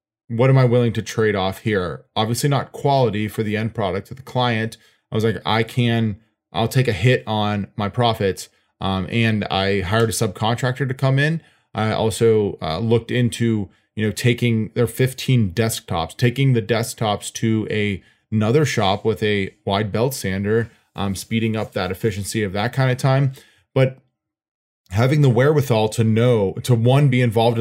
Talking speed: 180 wpm